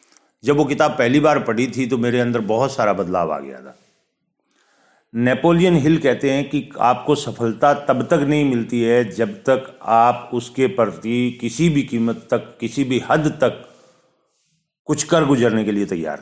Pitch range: 115-150 Hz